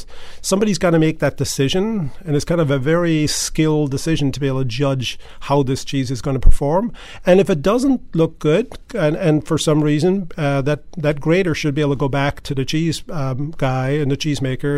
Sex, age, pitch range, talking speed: male, 40-59, 135-165 Hz, 225 wpm